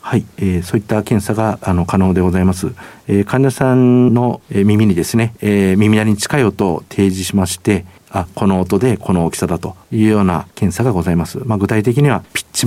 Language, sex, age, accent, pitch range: Japanese, male, 50-69, native, 90-110 Hz